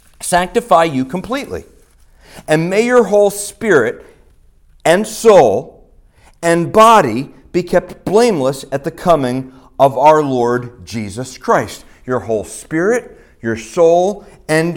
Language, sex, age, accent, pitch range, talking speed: English, male, 40-59, American, 130-185 Hz, 120 wpm